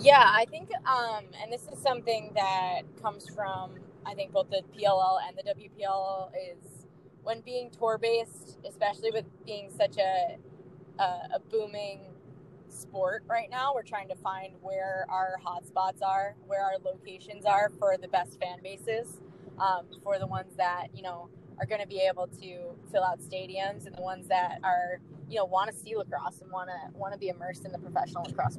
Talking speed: 185 wpm